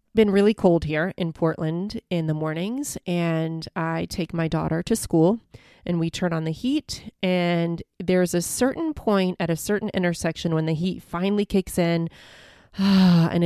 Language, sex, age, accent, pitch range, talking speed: English, female, 30-49, American, 165-200 Hz, 170 wpm